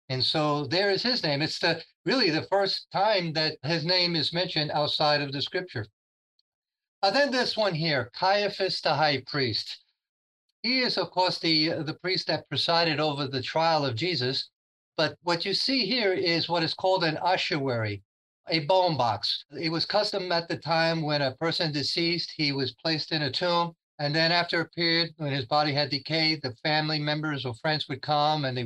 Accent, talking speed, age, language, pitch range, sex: American, 195 wpm, 50-69, English, 140-170 Hz, male